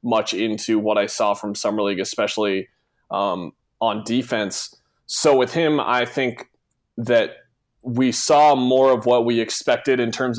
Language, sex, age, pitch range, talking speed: English, male, 20-39, 110-130 Hz, 155 wpm